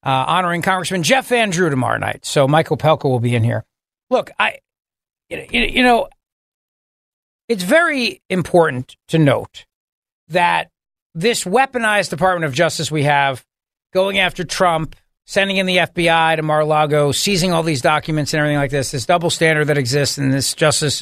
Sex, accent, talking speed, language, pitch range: male, American, 160 wpm, English, 145-190 Hz